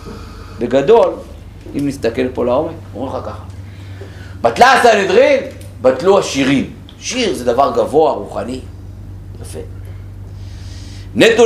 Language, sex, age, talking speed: Hebrew, male, 50-69, 100 wpm